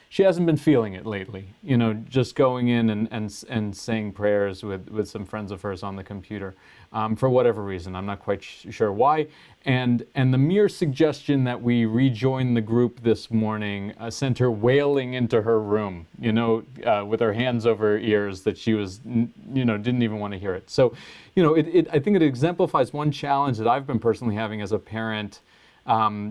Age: 30-49